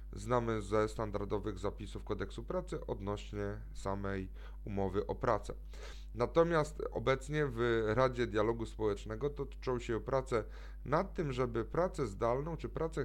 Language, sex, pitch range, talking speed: Polish, male, 105-130 Hz, 125 wpm